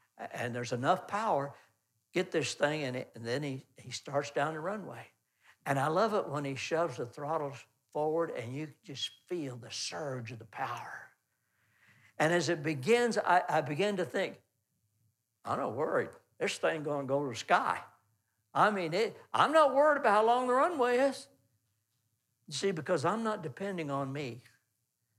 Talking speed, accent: 180 wpm, American